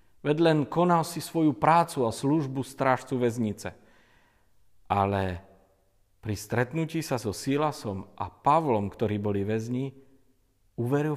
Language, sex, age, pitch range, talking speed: Slovak, male, 50-69, 100-145 Hz, 115 wpm